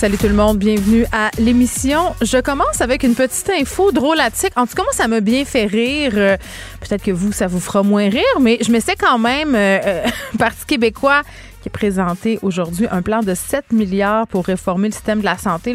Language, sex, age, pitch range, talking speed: French, female, 30-49, 205-260 Hz, 215 wpm